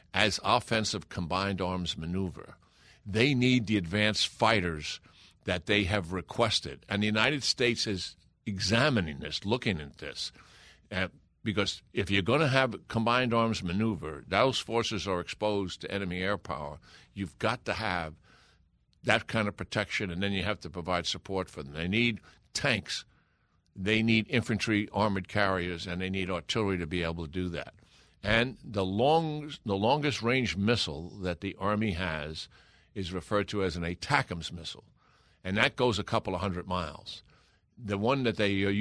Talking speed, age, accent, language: 165 wpm, 60-79, American, English